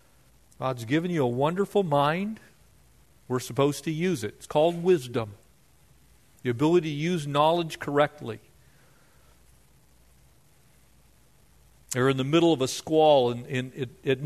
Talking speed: 130 wpm